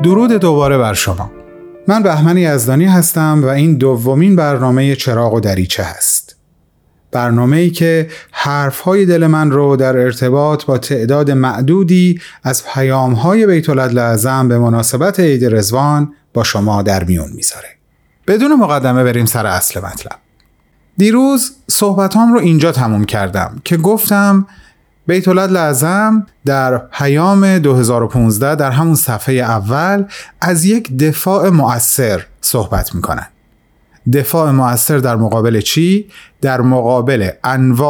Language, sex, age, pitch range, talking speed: Persian, male, 30-49, 125-180 Hz, 125 wpm